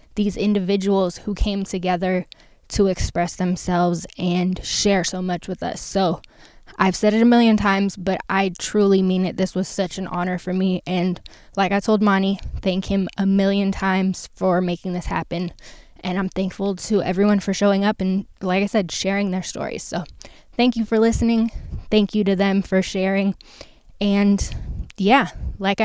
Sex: female